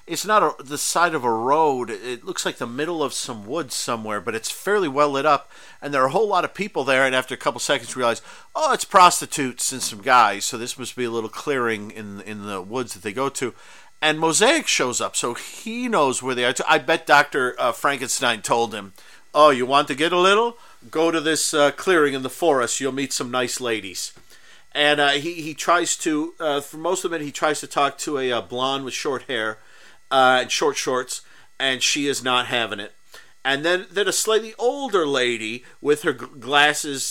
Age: 50-69